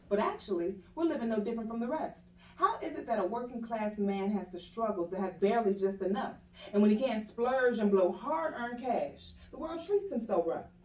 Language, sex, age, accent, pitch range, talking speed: English, female, 30-49, American, 195-260 Hz, 215 wpm